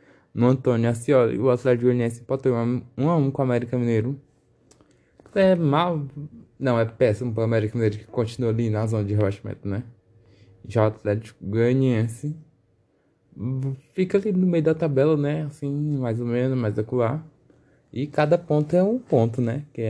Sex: male